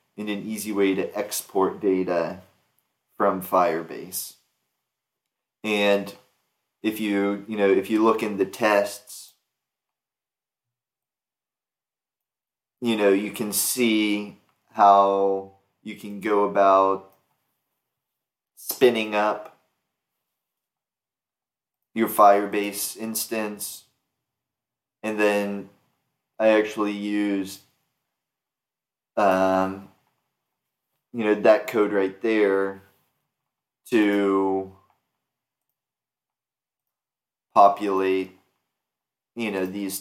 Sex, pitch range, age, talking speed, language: male, 95-110 Hz, 20-39, 80 wpm, English